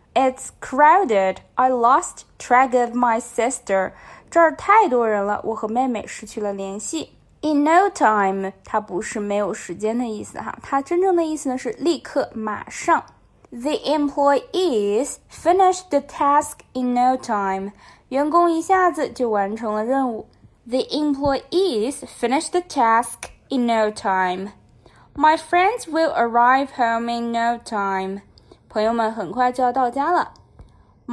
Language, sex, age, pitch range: Chinese, female, 20-39, 215-295 Hz